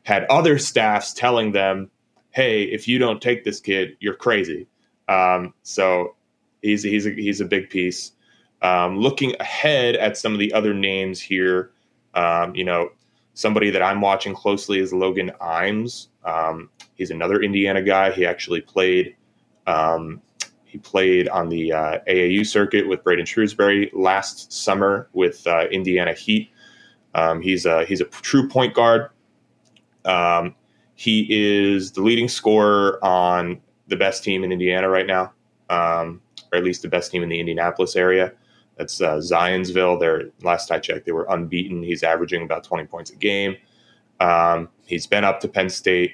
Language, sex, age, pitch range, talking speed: English, male, 20-39, 90-105 Hz, 165 wpm